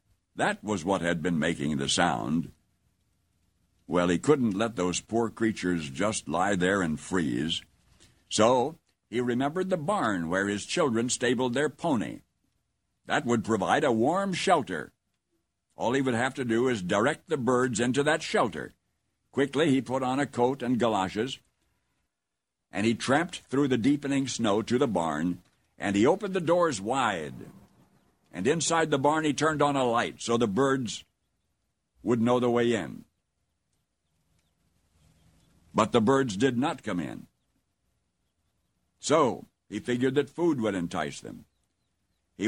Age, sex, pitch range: 60-79, male, 100-145 Hz